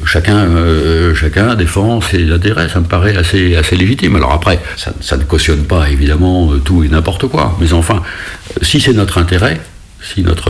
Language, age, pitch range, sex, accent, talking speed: French, 60-79, 80-95 Hz, male, French, 185 wpm